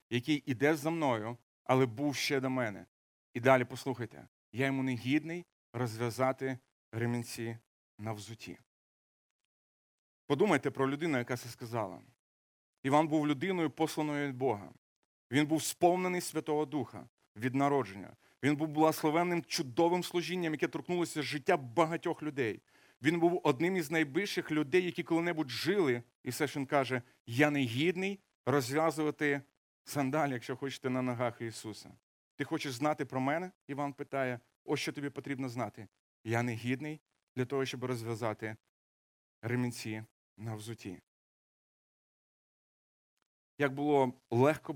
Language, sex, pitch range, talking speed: Ukrainian, male, 120-150 Hz, 130 wpm